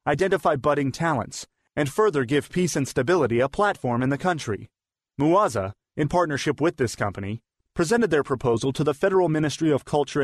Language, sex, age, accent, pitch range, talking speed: English, male, 30-49, American, 125-165 Hz, 170 wpm